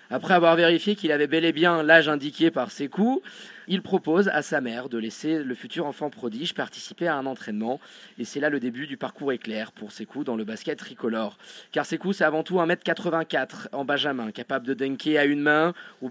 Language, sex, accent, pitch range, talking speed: French, male, French, 135-175 Hz, 225 wpm